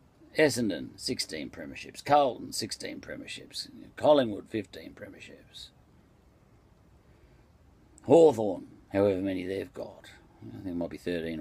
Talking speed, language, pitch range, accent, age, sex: 105 wpm, English, 95-120 Hz, Australian, 50-69, male